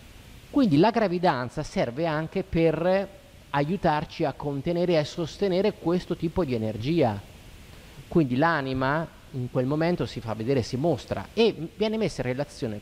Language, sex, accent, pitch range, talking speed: Italian, male, native, 115-170 Hz, 145 wpm